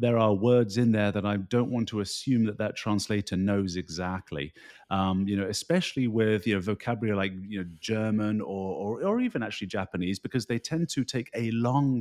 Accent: British